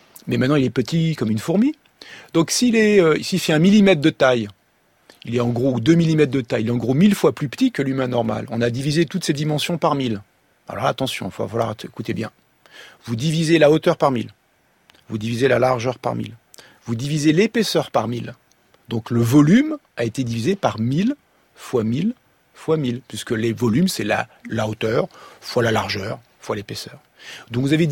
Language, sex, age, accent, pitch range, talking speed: French, male, 40-59, French, 120-165 Hz, 205 wpm